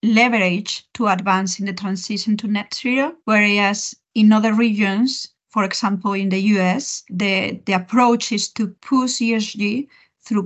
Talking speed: 150 wpm